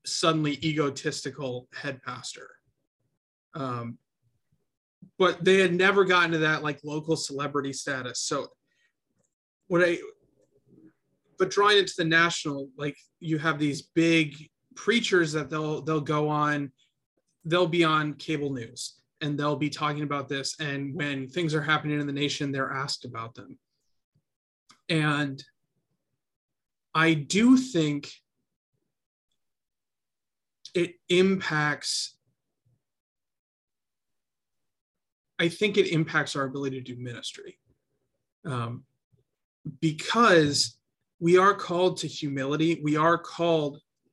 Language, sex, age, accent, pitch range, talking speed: English, male, 30-49, American, 140-175 Hz, 115 wpm